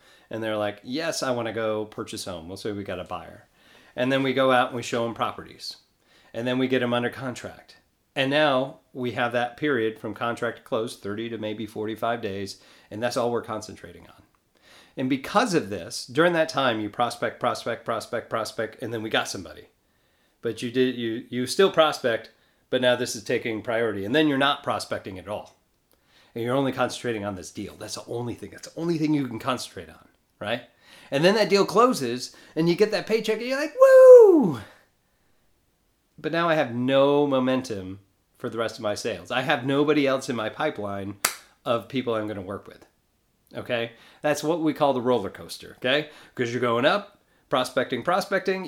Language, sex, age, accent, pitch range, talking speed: English, male, 40-59, American, 115-160 Hz, 200 wpm